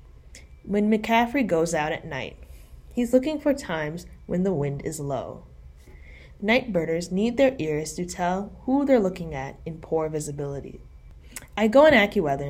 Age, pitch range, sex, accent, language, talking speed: 20-39, 140-210 Hz, female, American, English, 160 wpm